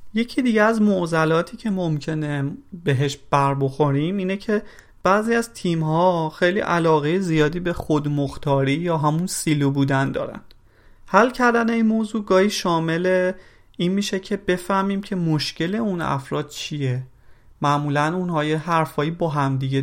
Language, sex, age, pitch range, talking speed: Persian, male, 30-49, 140-180 Hz, 135 wpm